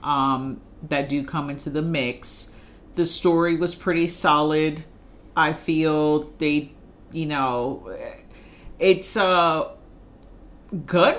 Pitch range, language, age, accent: 145-180 Hz, English, 40-59, American